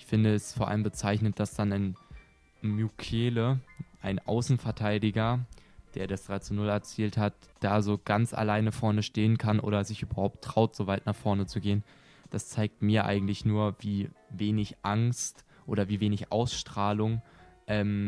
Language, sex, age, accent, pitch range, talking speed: German, male, 20-39, German, 100-115 Hz, 165 wpm